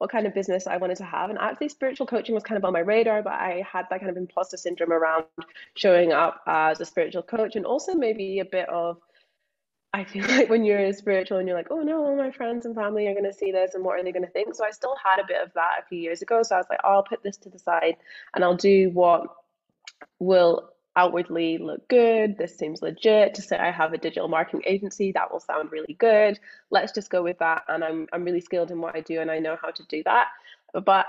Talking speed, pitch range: 265 wpm, 170-210 Hz